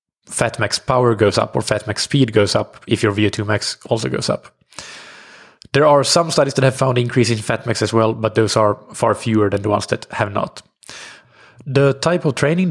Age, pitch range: 20-39, 110-130 Hz